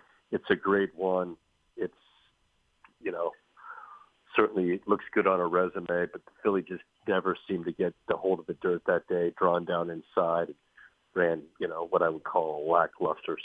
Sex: male